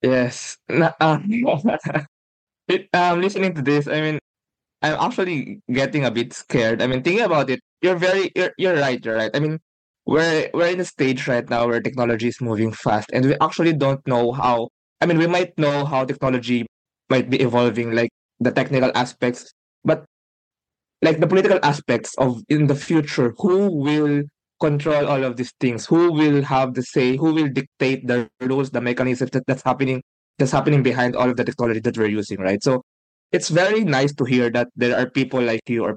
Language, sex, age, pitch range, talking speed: Filipino, male, 20-39, 120-150 Hz, 195 wpm